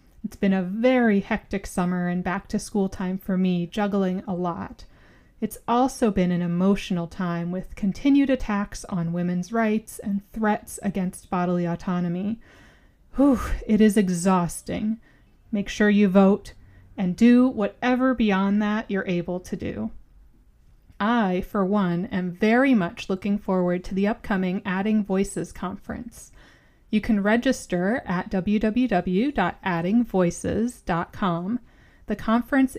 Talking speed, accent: 125 wpm, American